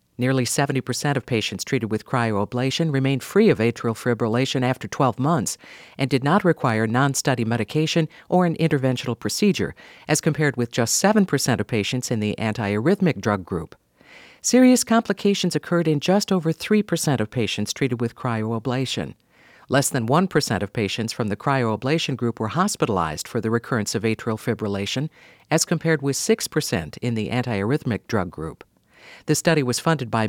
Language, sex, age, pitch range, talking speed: English, female, 50-69, 115-155 Hz, 160 wpm